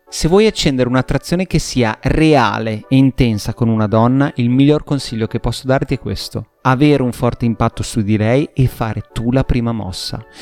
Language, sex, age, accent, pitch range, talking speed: Italian, male, 30-49, native, 115-155 Hz, 190 wpm